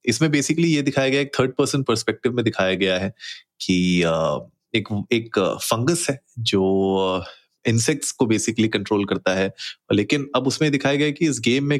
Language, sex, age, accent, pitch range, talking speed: Hindi, male, 30-49, native, 100-130 Hz, 175 wpm